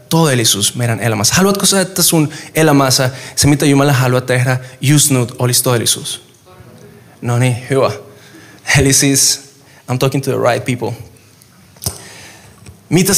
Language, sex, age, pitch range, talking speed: Finnish, male, 20-39, 120-155 Hz, 130 wpm